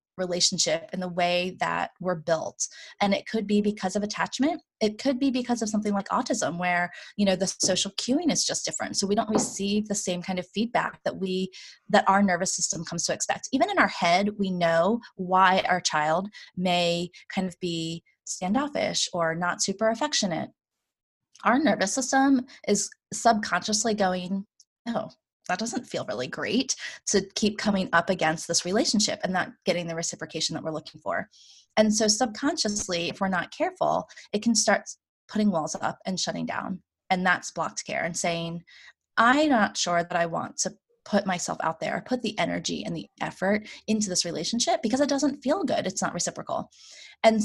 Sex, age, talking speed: female, 20-39, 185 wpm